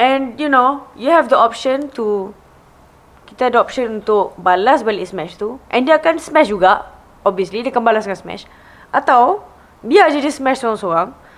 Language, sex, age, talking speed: English, female, 20-39, 180 wpm